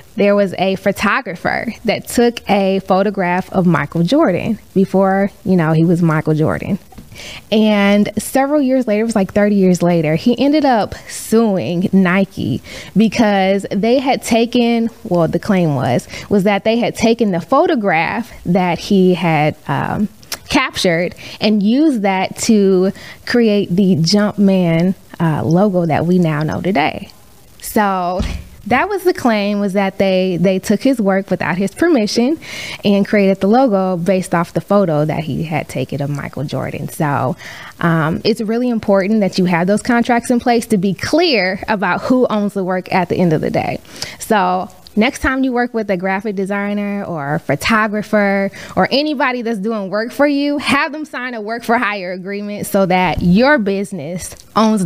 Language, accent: English, American